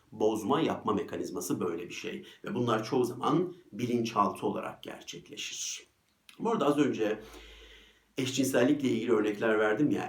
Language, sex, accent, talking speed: Turkish, male, native, 130 wpm